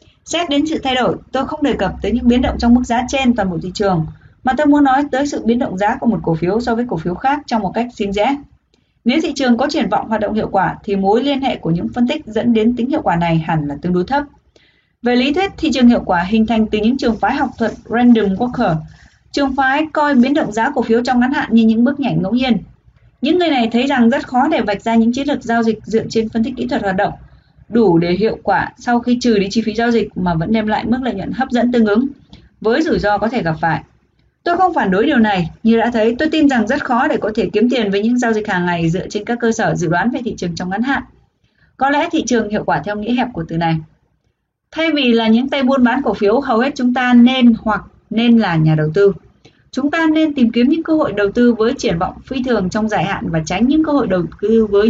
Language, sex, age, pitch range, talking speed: Vietnamese, female, 20-39, 205-260 Hz, 280 wpm